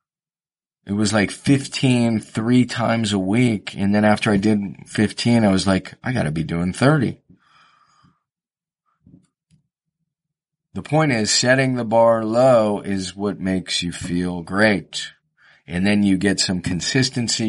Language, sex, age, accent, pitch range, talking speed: English, male, 40-59, American, 100-120 Hz, 145 wpm